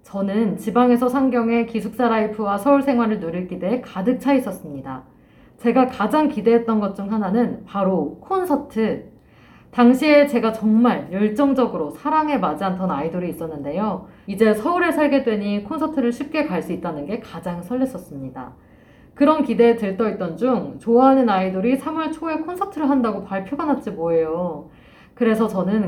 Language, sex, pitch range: Korean, female, 185-260 Hz